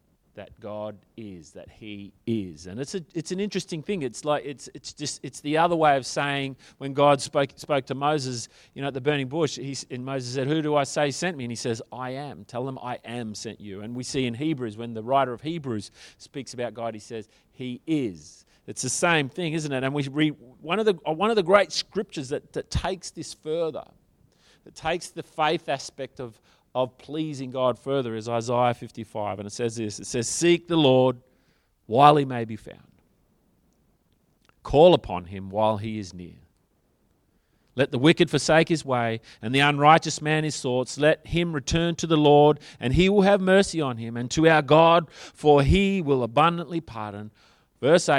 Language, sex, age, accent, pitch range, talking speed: English, male, 40-59, Australian, 115-160 Hz, 205 wpm